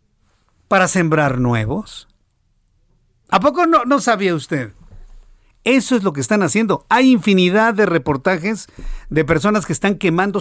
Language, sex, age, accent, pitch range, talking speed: Spanish, male, 50-69, Mexican, 145-195 Hz, 140 wpm